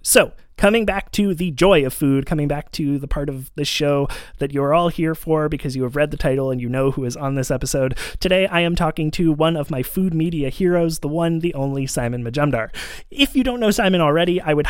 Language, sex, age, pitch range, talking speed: English, male, 30-49, 145-185 Hz, 245 wpm